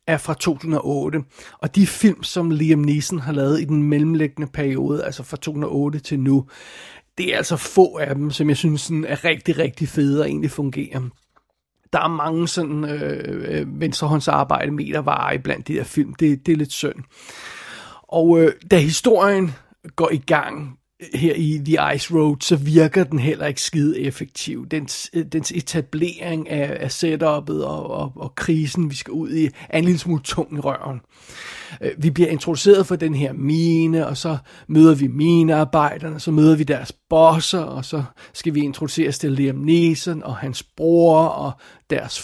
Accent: native